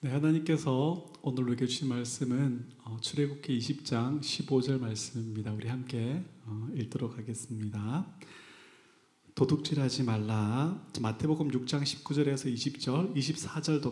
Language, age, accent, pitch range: Korean, 30-49, native, 120-145 Hz